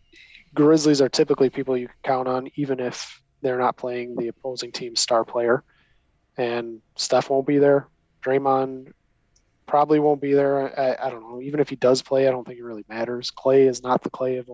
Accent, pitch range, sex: American, 125-145 Hz, male